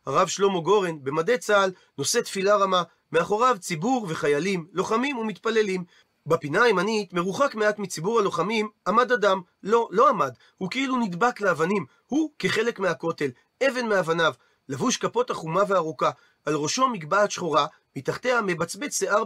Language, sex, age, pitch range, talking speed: Hebrew, male, 40-59, 170-230 Hz, 135 wpm